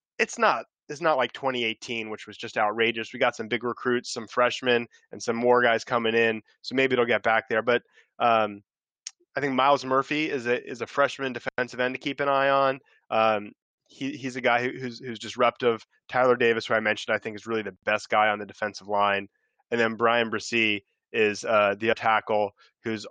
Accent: American